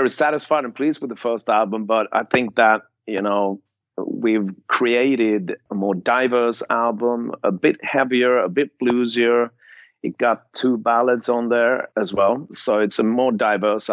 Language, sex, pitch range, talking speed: English, male, 95-115 Hz, 170 wpm